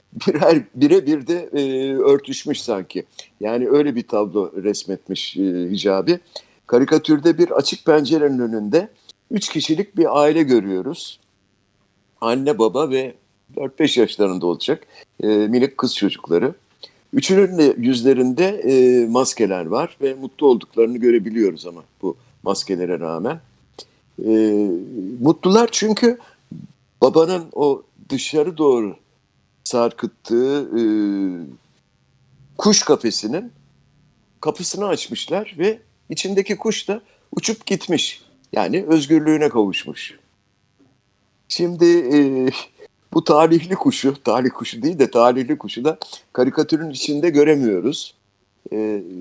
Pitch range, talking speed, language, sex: 115-165 Hz, 100 wpm, Turkish, male